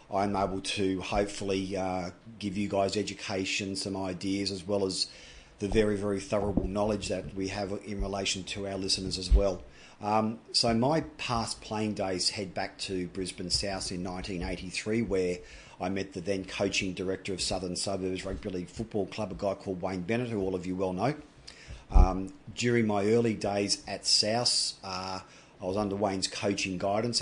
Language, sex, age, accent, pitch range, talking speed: English, male, 40-59, Australian, 95-105 Hz, 180 wpm